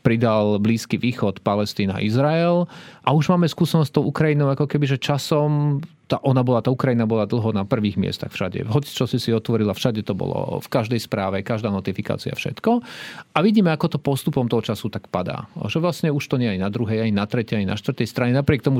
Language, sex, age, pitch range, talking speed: Slovak, male, 40-59, 115-145 Hz, 215 wpm